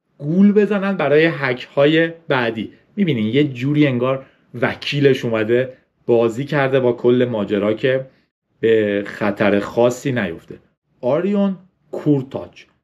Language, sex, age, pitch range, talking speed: Persian, male, 40-59, 125-175 Hz, 110 wpm